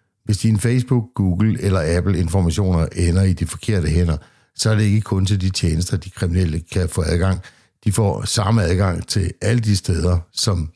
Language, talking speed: Danish, 185 wpm